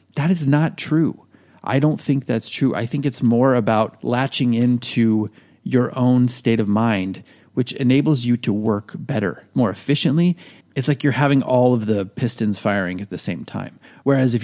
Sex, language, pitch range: male, English, 105-130 Hz